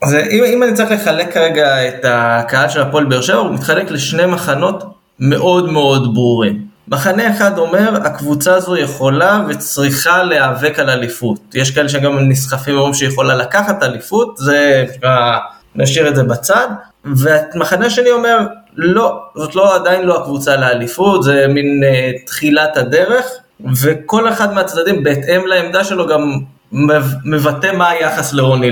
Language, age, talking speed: Hebrew, 20-39, 145 wpm